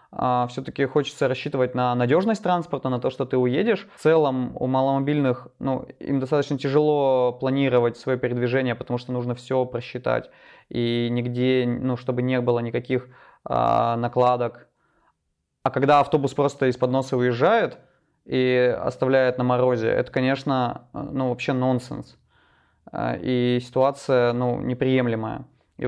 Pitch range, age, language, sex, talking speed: 125-140 Hz, 20-39, Russian, male, 135 wpm